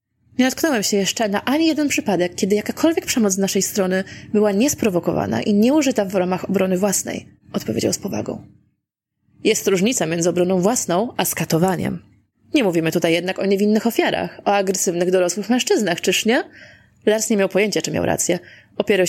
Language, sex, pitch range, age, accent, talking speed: Polish, female, 180-240 Hz, 20-39, native, 165 wpm